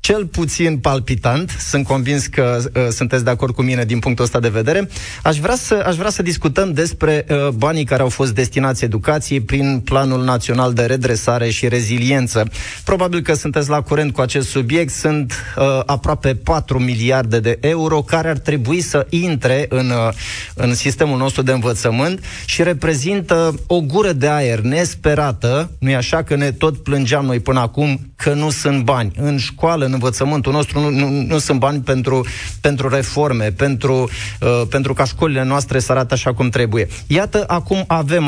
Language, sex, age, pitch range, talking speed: Romanian, male, 20-39, 125-155 Hz, 165 wpm